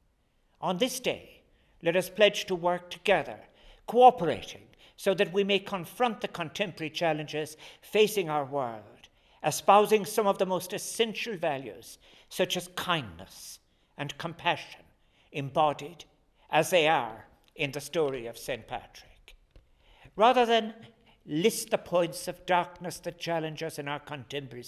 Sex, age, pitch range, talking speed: male, 60-79, 145-200 Hz, 135 wpm